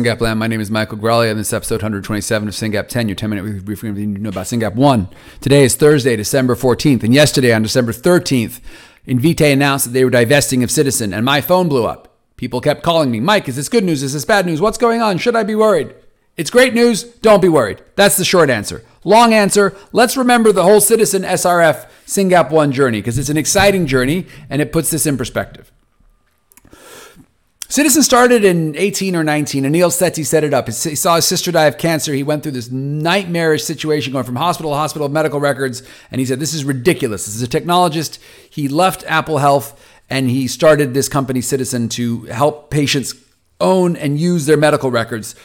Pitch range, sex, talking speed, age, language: 120-175 Hz, male, 205 wpm, 40-59, English